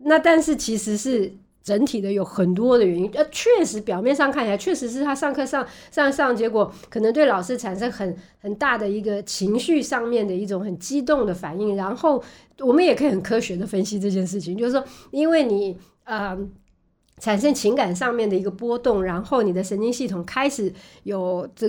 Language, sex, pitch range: Chinese, female, 190-245 Hz